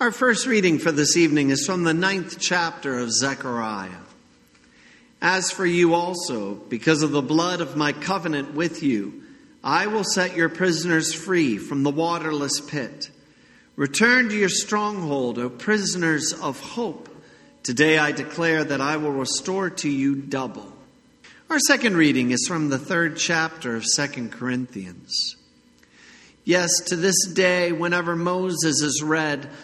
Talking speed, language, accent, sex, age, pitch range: 150 wpm, English, American, male, 50-69, 130-175 Hz